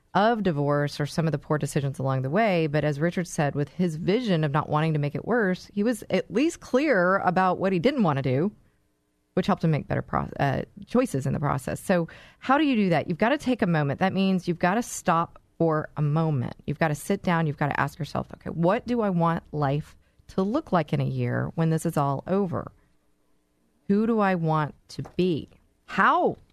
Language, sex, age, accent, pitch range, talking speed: English, female, 30-49, American, 145-190 Hz, 230 wpm